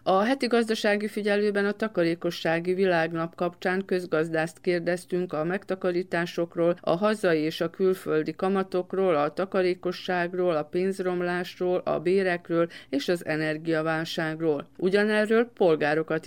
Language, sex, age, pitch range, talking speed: Hungarian, female, 50-69, 165-190 Hz, 105 wpm